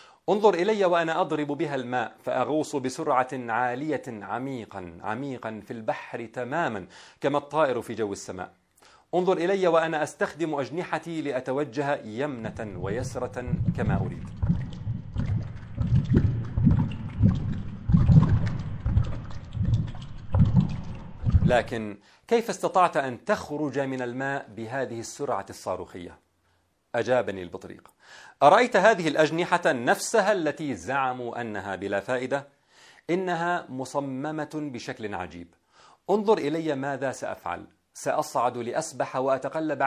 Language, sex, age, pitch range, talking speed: English, male, 40-59, 115-155 Hz, 90 wpm